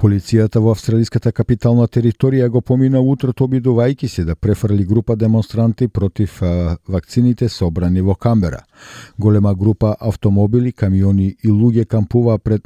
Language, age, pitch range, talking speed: Bulgarian, 50-69, 95-120 Hz, 130 wpm